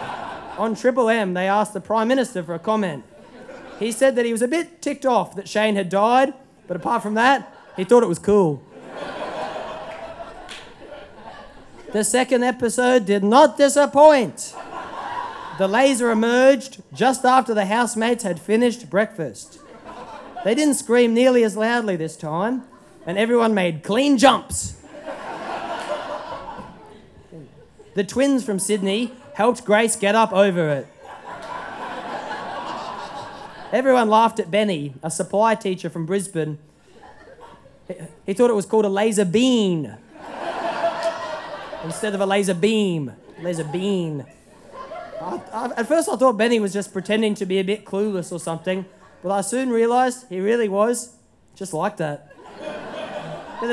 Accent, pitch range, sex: Australian, 195-250 Hz, male